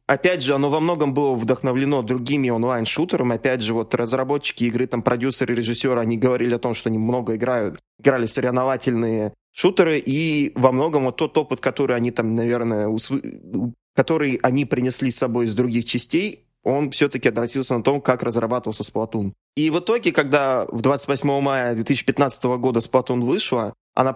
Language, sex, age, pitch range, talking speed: Russian, male, 20-39, 120-140 Hz, 165 wpm